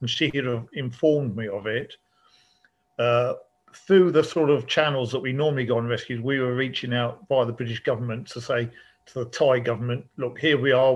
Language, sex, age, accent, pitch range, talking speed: English, male, 50-69, British, 115-135 Hz, 210 wpm